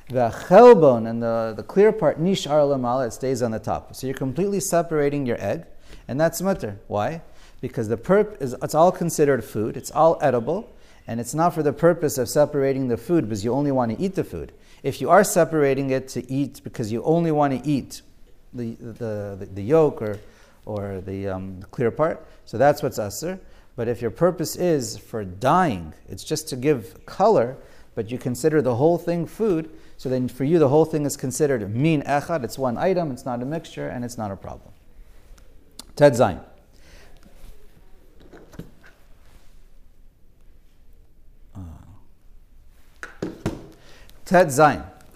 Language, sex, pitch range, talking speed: English, male, 115-160 Hz, 165 wpm